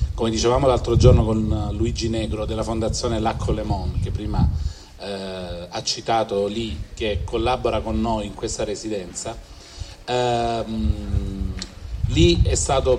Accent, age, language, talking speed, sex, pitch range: native, 40-59, Italian, 125 wpm, male, 105-130 Hz